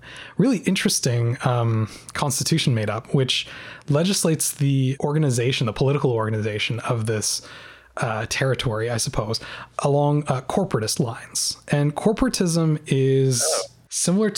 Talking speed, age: 115 wpm, 20-39